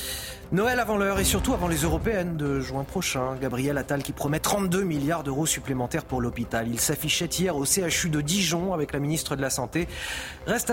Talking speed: 195 wpm